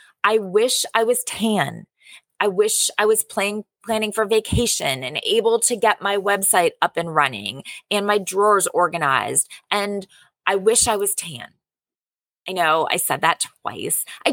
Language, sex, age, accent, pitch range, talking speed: English, female, 20-39, American, 180-295 Hz, 165 wpm